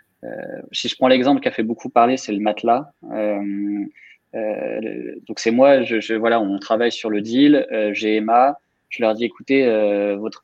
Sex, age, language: male, 20-39, French